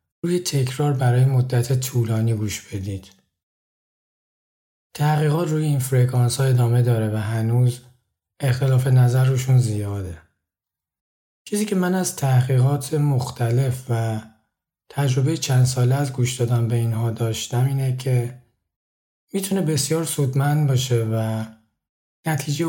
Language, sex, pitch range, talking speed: Persian, male, 110-135 Hz, 115 wpm